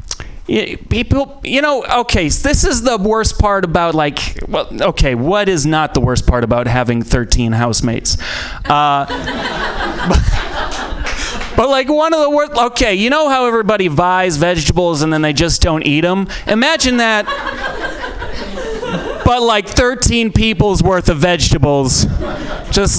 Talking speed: 145 wpm